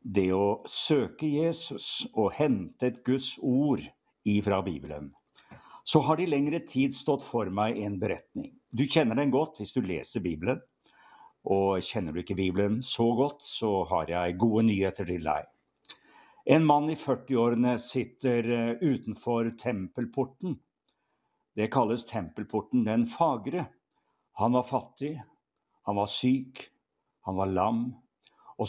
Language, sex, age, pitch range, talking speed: English, male, 60-79, 105-145 Hz, 135 wpm